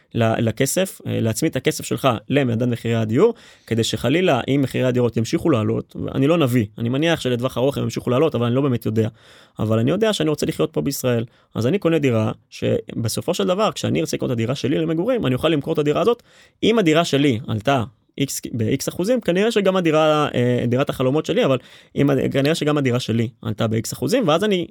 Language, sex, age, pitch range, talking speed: Hebrew, male, 20-39, 115-155 Hz, 180 wpm